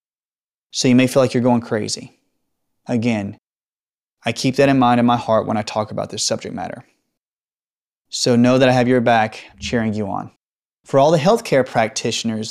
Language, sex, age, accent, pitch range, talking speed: English, male, 20-39, American, 110-130 Hz, 185 wpm